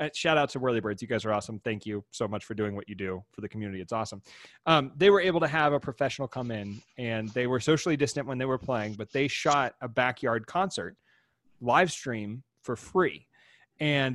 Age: 30-49